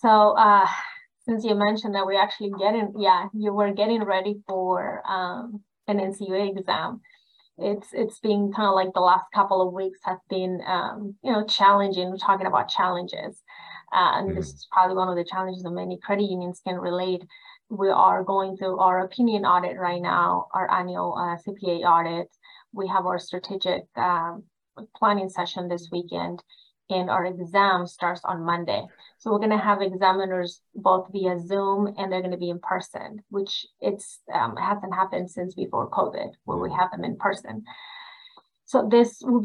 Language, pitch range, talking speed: English, 185-210 Hz, 180 wpm